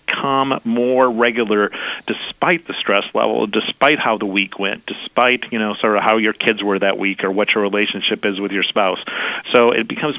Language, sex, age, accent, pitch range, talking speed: English, male, 40-59, American, 105-115 Hz, 200 wpm